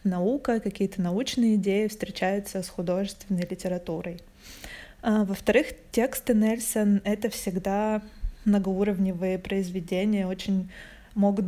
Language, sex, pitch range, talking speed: Russian, female, 185-210 Hz, 90 wpm